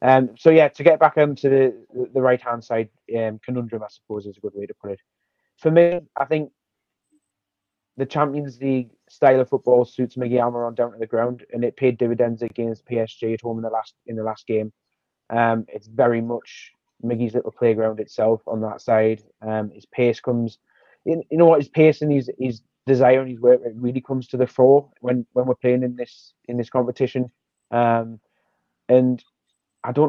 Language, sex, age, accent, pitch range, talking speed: English, male, 20-39, British, 115-135 Hz, 205 wpm